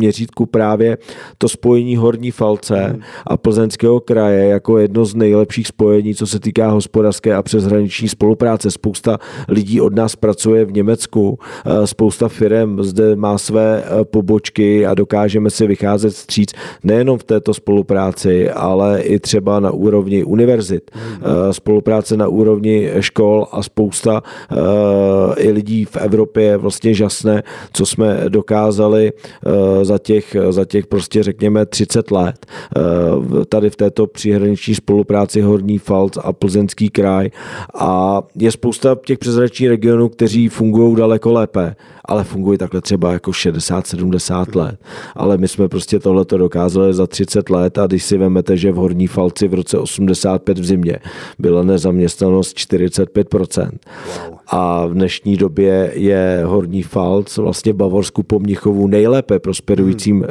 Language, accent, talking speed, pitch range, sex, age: Czech, native, 135 wpm, 95-110 Hz, male, 40-59